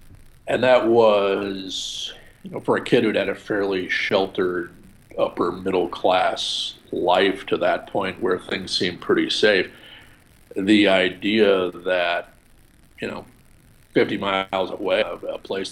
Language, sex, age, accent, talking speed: English, male, 50-69, American, 135 wpm